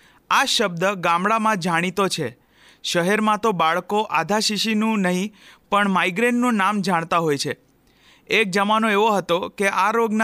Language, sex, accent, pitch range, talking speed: Gujarati, male, native, 175-220 Hz, 125 wpm